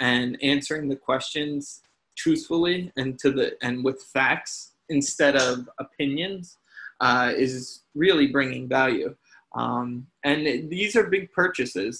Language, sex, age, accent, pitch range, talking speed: English, male, 20-39, American, 130-145 Hz, 130 wpm